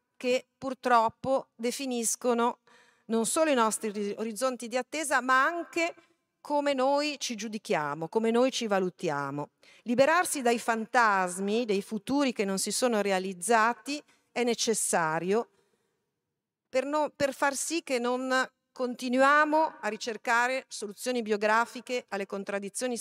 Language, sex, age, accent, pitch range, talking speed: Italian, female, 40-59, native, 185-250 Hz, 115 wpm